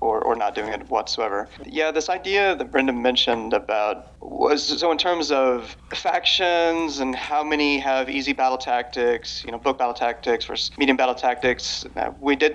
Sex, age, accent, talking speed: male, 30-49, American, 175 wpm